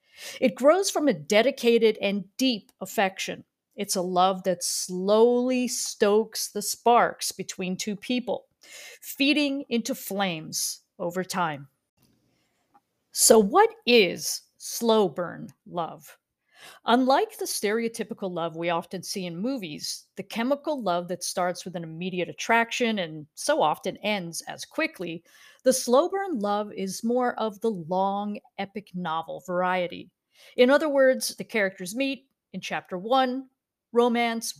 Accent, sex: American, female